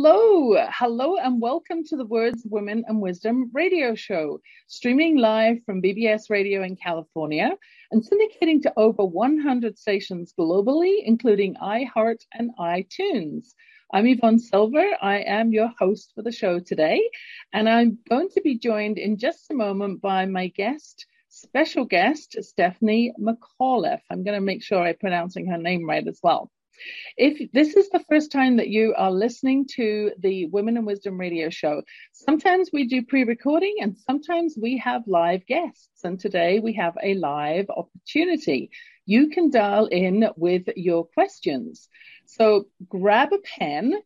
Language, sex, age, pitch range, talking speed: English, female, 40-59, 190-300 Hz, 155 wpm